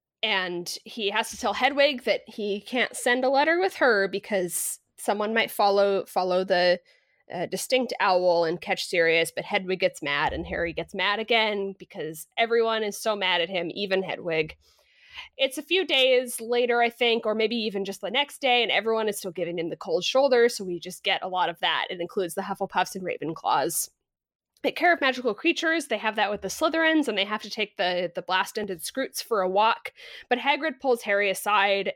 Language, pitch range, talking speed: English, 185-245 Hz, 205 wpm